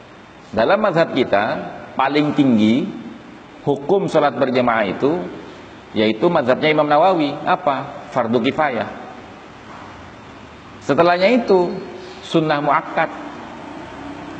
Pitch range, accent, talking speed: 145-210 Hz, native, 85 wpm